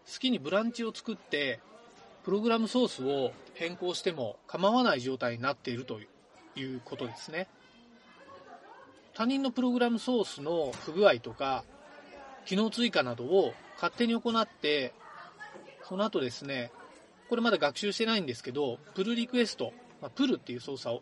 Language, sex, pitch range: Japanese, male, 135-225 Hz